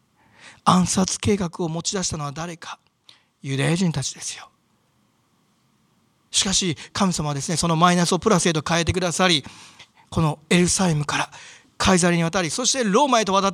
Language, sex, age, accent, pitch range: Japanese, male, 40-59, native, 155-205 Hz